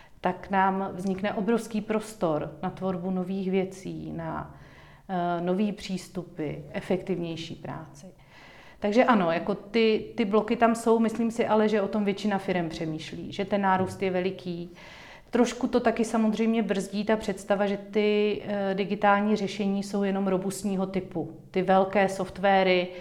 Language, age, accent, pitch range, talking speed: Czech, 40-59, native, 175-205 Hz, 145 wpm